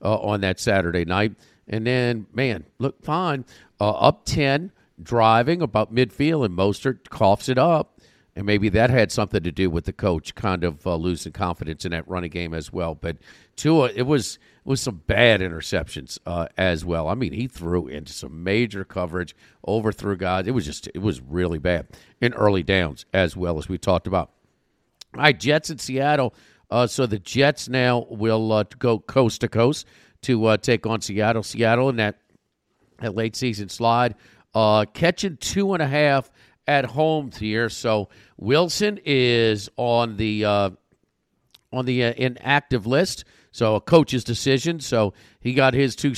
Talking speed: 170 wpm